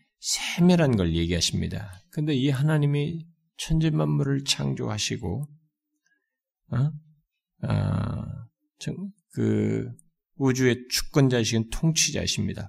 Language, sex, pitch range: Korean, male, 100-150 Hz